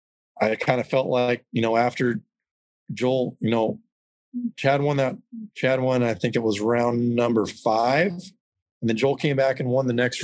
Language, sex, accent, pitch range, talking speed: English, male, American, 110-135 Hz, 190 wpm